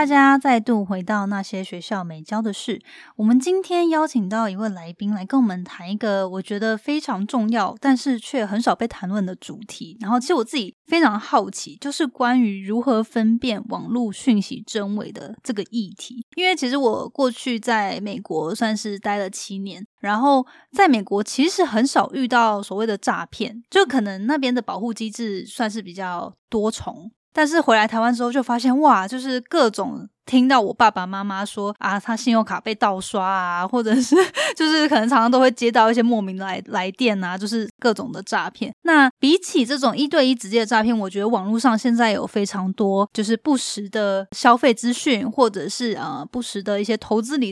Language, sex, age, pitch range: Chinese, female, 10-29, 205-255 Hz